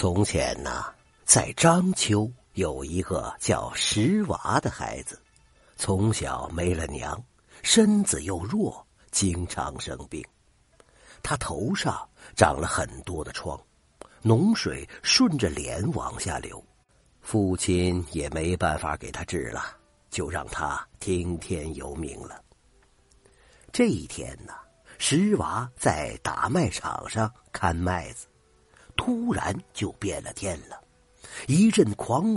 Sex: male